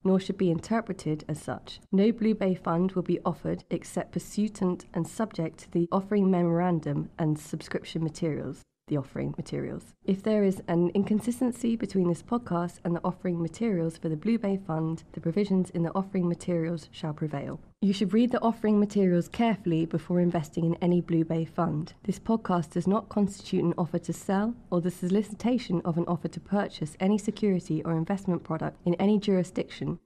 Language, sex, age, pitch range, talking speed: English, female, 20-39, 170-200 Hz, 180 wpm